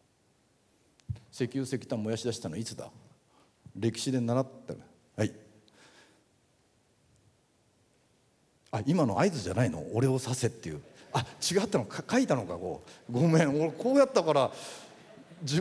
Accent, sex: native, male